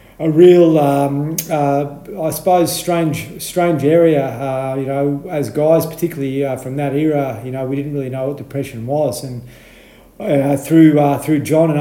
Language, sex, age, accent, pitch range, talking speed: English, male, 30-49, Australian, 130-150 Hz, 180 wpm